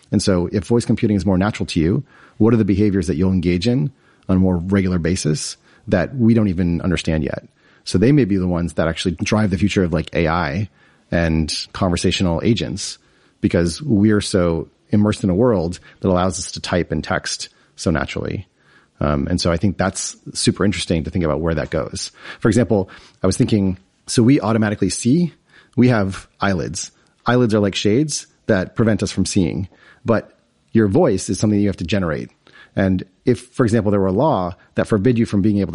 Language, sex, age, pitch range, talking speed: English, male, 30-49, 90-110 Hz, 205 wpm